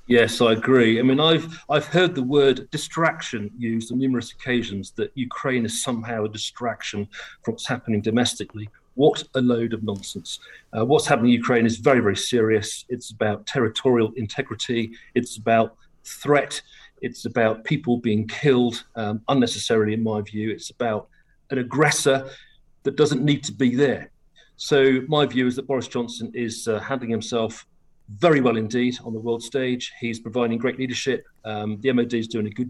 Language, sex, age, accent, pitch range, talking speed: English, male, 40-59, British, 110-130 Hz, 175 wpm